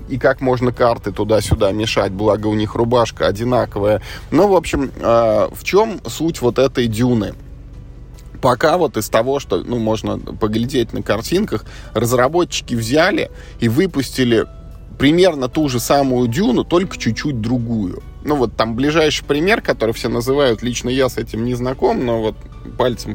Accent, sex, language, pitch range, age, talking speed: native, male, Russian, 110-140 Hz, 20-39, 155 wpm